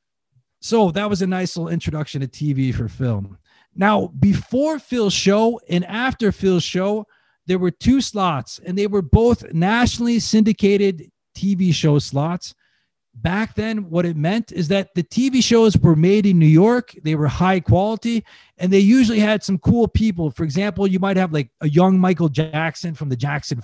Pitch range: 160-215 Hz